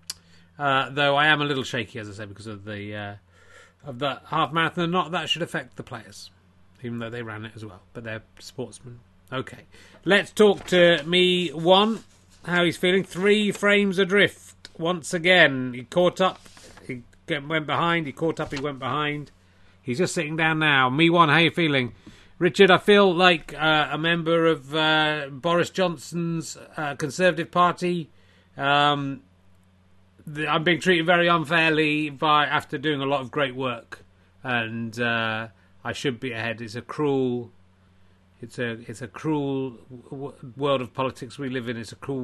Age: 30-49